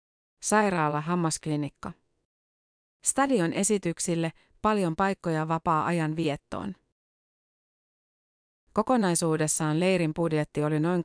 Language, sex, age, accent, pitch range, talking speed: Finnish, female, 30-49, native, 150-180 Hz, 65 wpm